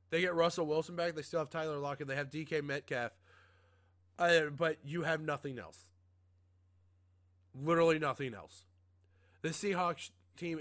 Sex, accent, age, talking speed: male, American, 30-49, 145 wpm